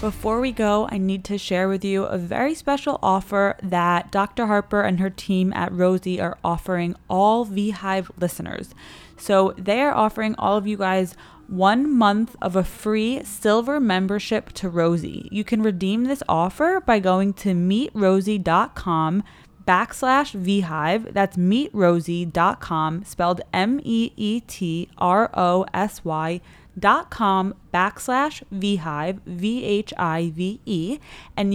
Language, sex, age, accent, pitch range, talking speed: English, female, 20-39, American, 180-220 Hz, 120 wpm